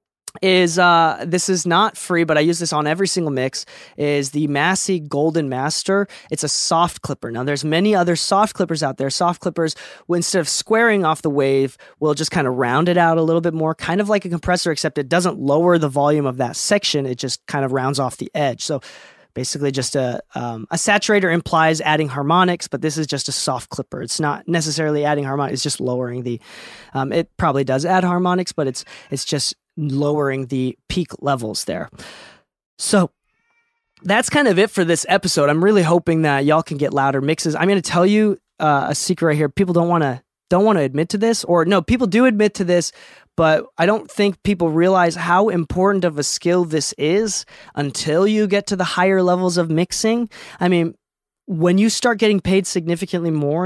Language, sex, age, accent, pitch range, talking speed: English, male, 20-39, American, 145-185 Hz, 210 wpm